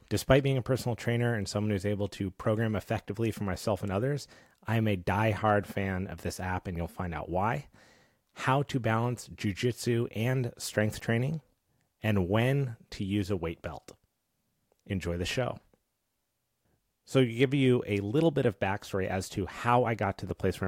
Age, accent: 30-49, American